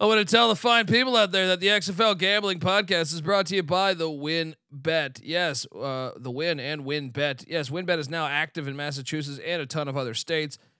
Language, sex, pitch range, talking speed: English, male, 135-170 Hz, 240 wpm